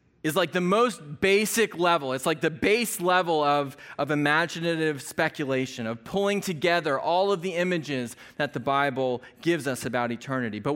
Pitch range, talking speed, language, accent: 130-180 Hz, 165 wpm, English, American